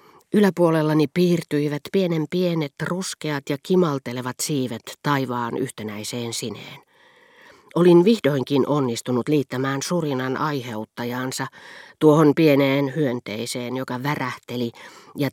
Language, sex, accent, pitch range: Finnish, female, native, 125-155 Hz